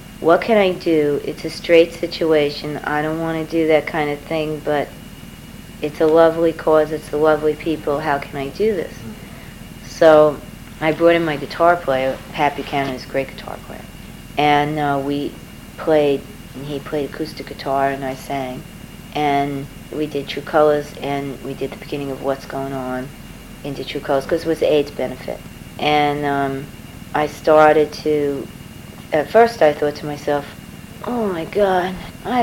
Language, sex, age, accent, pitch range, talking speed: English, female, 40-59, American, 140-175 Hz, 175 wpm